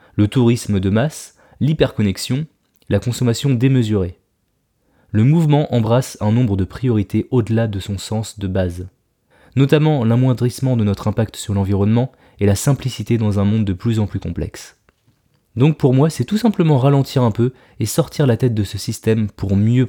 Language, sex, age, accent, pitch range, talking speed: French, male, 20-39, French, 105-140 Hz, 170 wpm